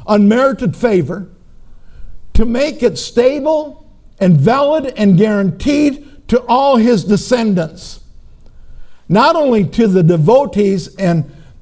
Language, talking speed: English, 105 wpm